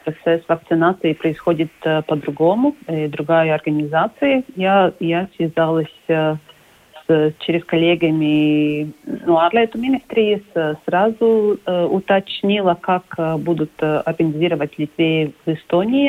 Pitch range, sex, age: 160-190 Hz, female, 40-59